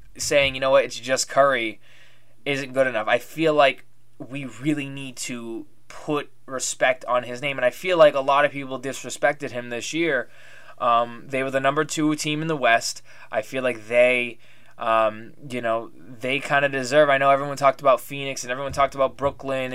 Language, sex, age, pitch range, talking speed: English, male, 20-39, 120-145 Hz, 200 wpm